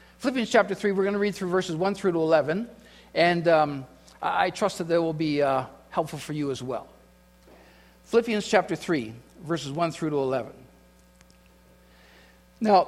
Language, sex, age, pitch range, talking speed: English, male, 50-69, 160-210 Hz, 170 wpm